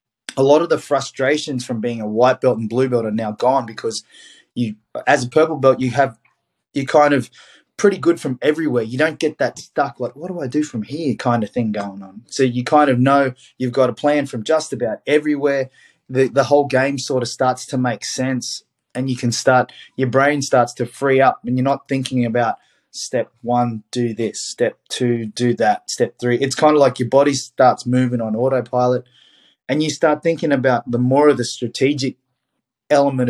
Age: 20-39